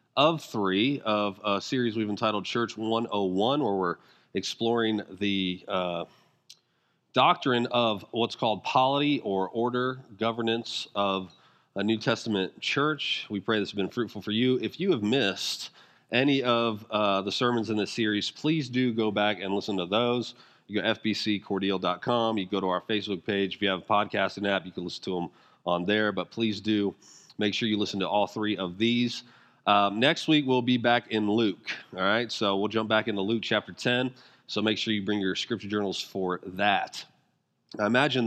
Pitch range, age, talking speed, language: 100-125 Hz, 40-59, 190 wpm, English